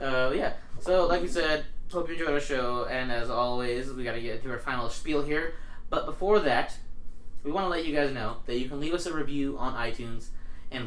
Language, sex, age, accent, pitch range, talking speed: English, male, 20-39, American, 115-150 Hz, 225 wpm